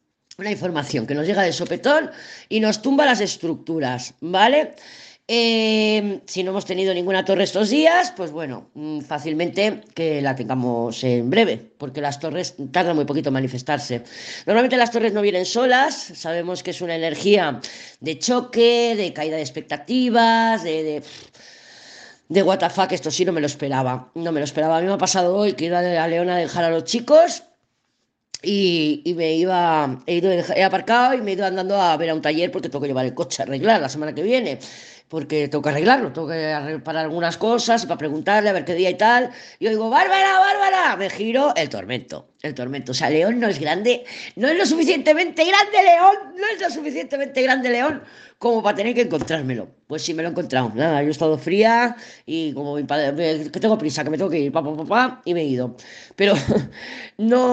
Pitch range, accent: 155-235 Hz, Spanish